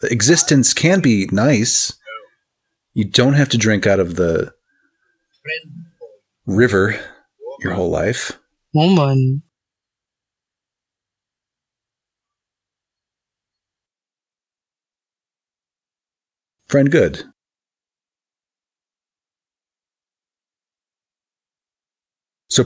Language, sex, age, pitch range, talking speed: English, male, 40-59, 100-155 Hz, 55 wpm